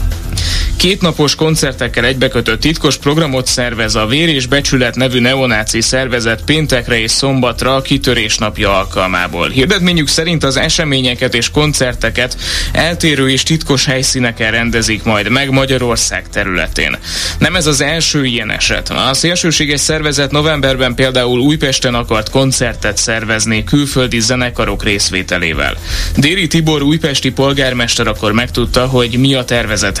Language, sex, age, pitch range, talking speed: Hungarian, male, 20-39, 105-140 Hz, 125 wpm